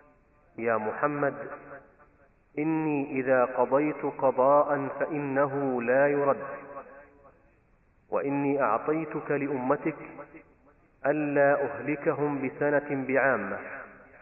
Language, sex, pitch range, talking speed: Arabic, male, 130-145 Hz, 70 wpm